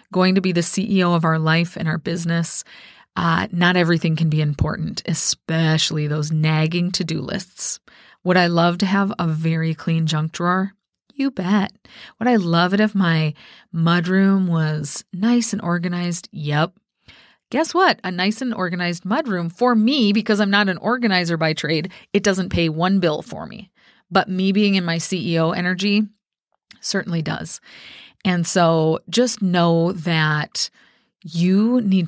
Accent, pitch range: American, 165-200 Hz